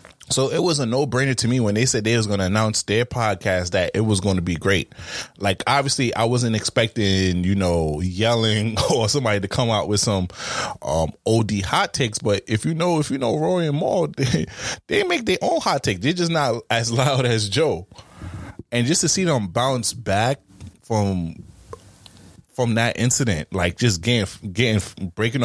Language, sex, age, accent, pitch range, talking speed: English, male, 20-39, American, 95-115 Hz, 195 wpm